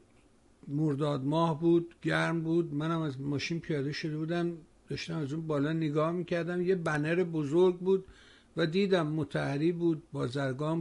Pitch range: 135-170 Hz